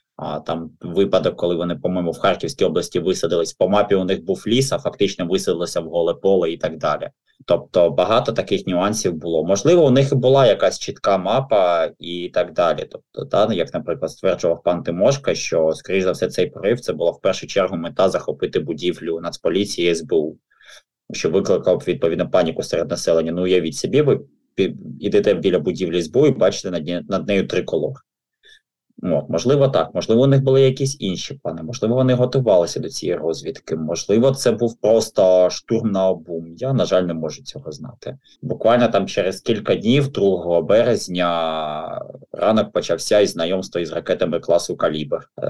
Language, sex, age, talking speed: Ukrainian, male, 20-39, 165 wpm